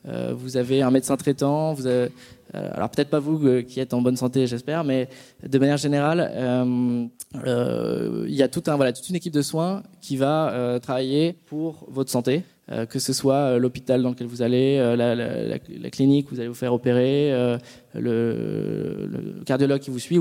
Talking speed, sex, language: 205 wpm, male, French